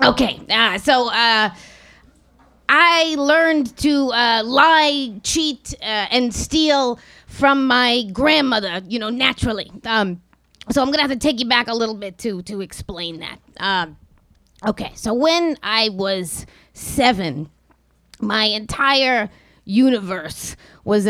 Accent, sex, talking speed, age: American, female, 130 wpm, 20-39